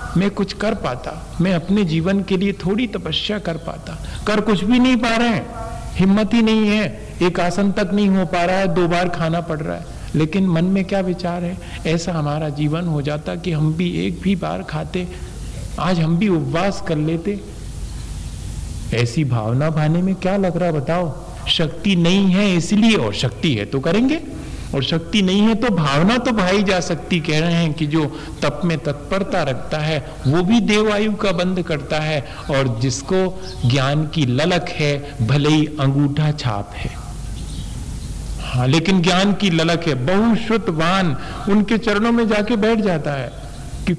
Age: 50-69